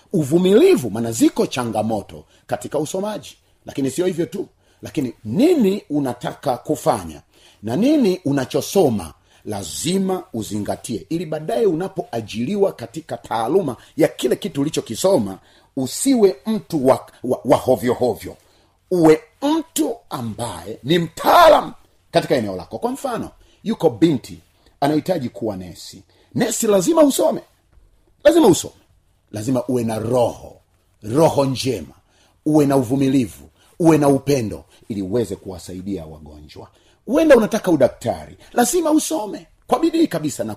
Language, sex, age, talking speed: Swahili, male, 40-59, 115 wpm